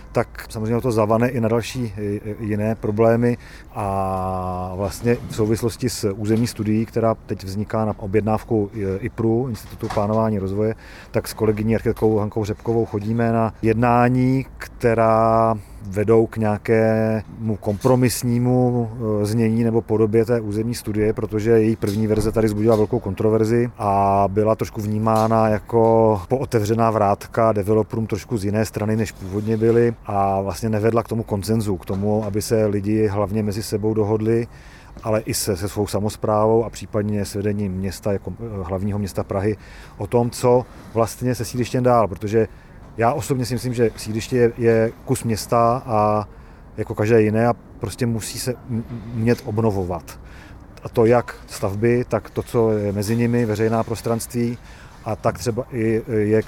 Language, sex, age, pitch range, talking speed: Czech, male, 40-59, 105-115 Hz, 155 wpm